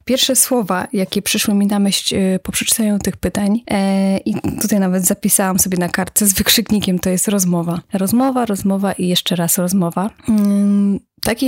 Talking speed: 155 wpm